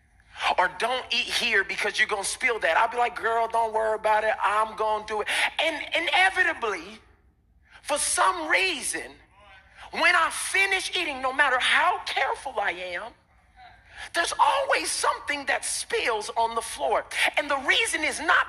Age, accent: 40-59, American